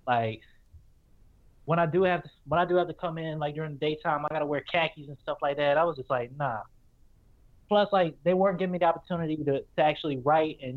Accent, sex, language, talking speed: American, male, English, 245 wpm